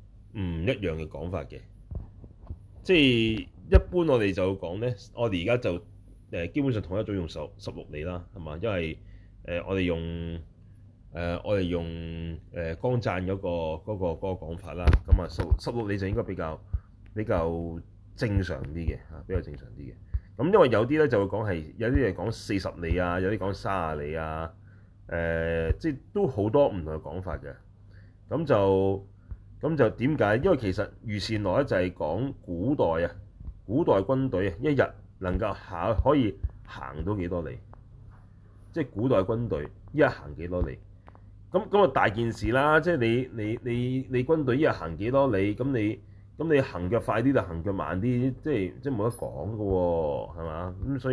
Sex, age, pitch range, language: male, 30-49, 85-115 Hz, Chinese